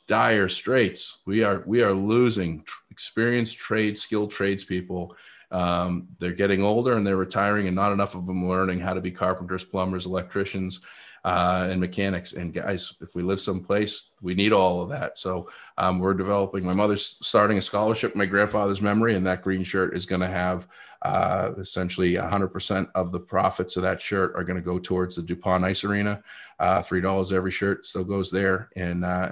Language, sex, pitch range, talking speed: English, male, 90-105 Hz, 190 wpm